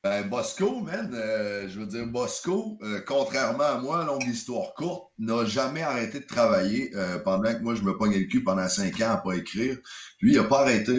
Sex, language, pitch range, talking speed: male, French, 95-140 Hz, 220 wpm